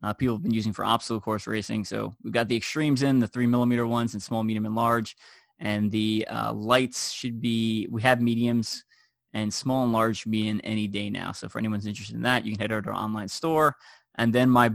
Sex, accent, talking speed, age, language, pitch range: male, American, 240 wpm, 20-39, English, 110-120 Hz